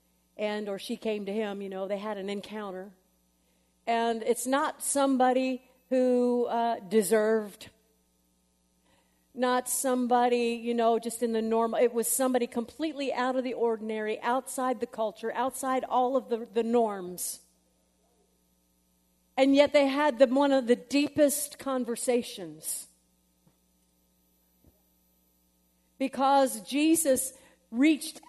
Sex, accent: female, American